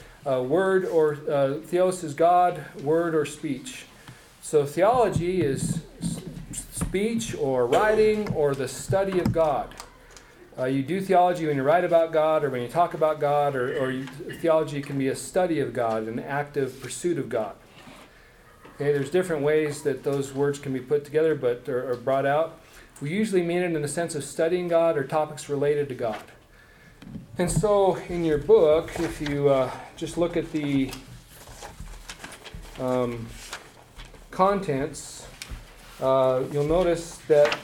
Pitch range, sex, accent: 135-170 Hz, male, American